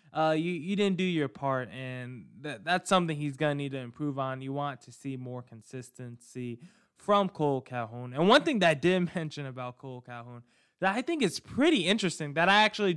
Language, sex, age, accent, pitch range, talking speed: English, male, 20-39, American, 125-185 Hz, 215 wpm